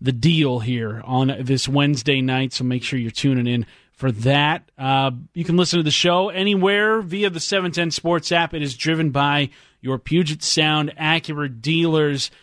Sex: male